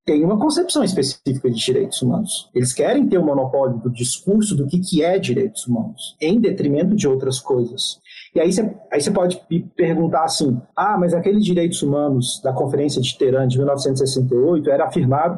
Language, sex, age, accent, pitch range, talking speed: Portuguese, male, 40-59, Brazilian, 140-185 Hz, 175 wpm